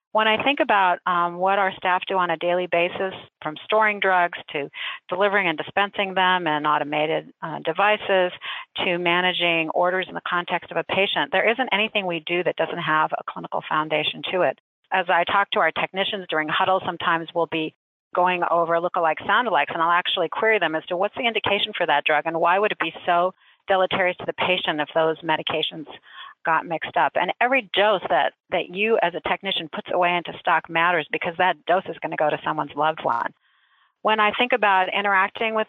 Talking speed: 205 wpm